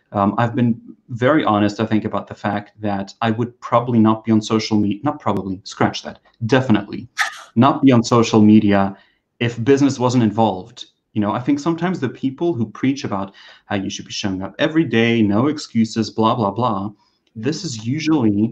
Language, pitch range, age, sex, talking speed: English, 105-120 Hz, 30-49, male, 190 wpm